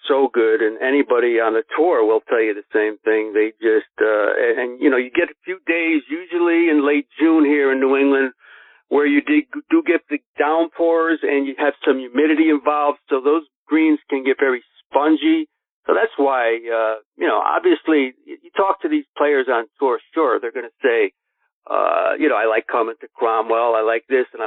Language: English